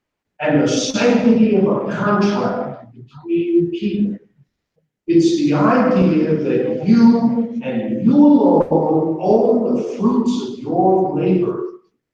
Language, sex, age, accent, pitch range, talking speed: English, male, 50-69, American, 170-250 Hz, 115 wpm